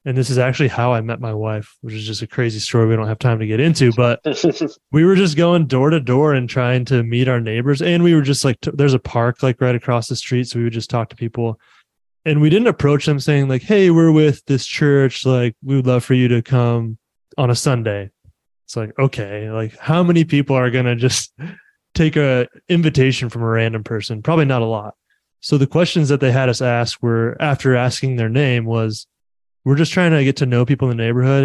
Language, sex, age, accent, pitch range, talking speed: English, male, 20-39, American, 115-140 Hz, 240 wpm